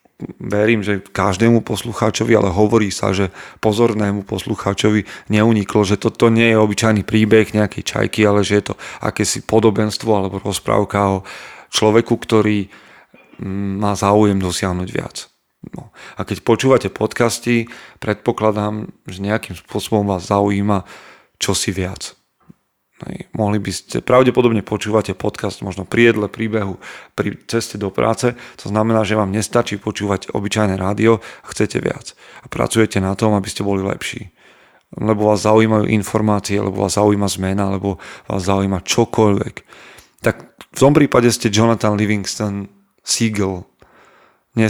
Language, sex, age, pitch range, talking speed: Slovak, male, 40-59, 100-110 Hz, 135 wpm